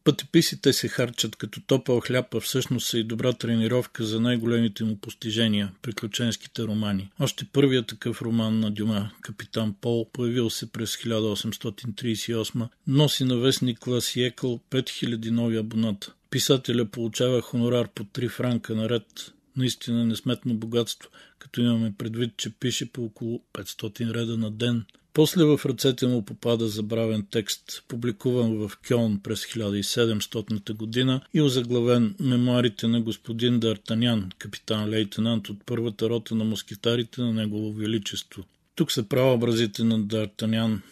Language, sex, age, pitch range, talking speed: Bulgarian, male, 50-69, 110-125 Hz, 140 wpm